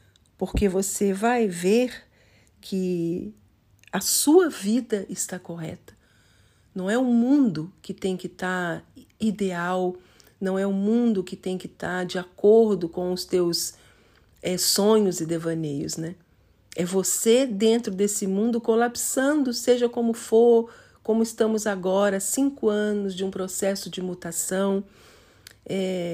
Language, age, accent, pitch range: English, 50-69, Brazilian, 175-225 Hz